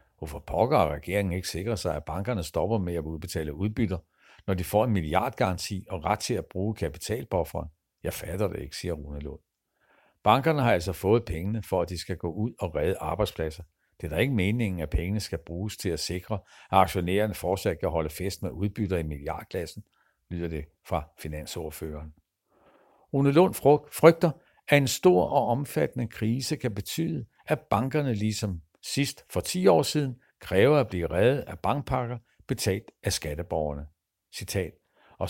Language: Danish